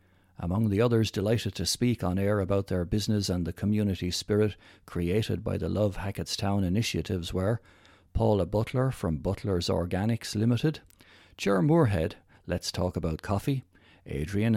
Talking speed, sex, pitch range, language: 145 wpm, male, 90-115 Hz, English